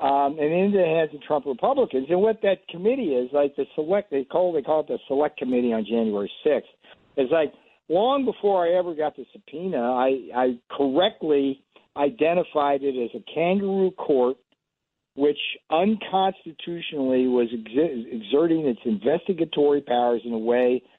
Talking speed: 155 wpm